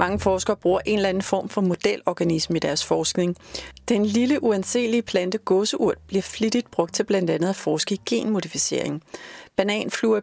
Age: 40-59